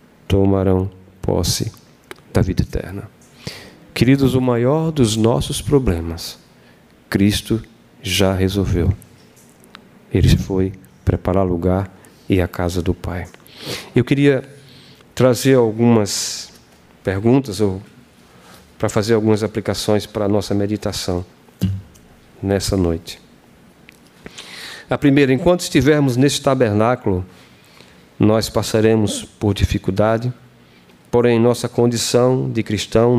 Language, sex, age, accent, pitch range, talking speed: Portuguese, male, 40-59, Brazilian, 90-120 Hz, 100 wpm